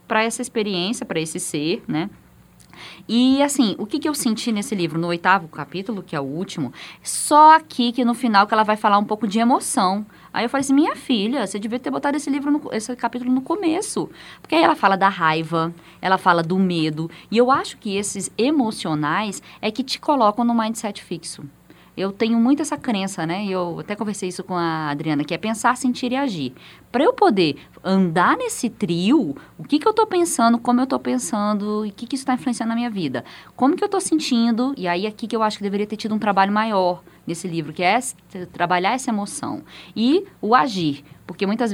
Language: Portuguese